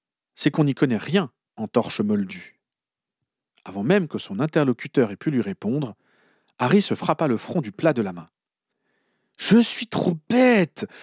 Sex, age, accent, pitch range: male, 40-59, French, 125-190 Hz